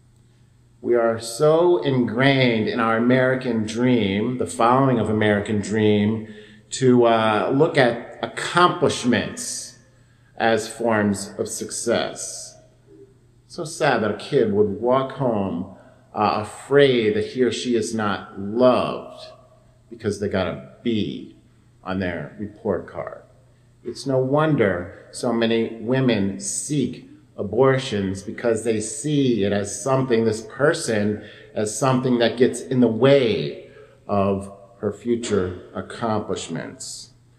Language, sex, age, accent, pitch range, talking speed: English, male, 50-69, American, 110-140 Hz, 120 wpm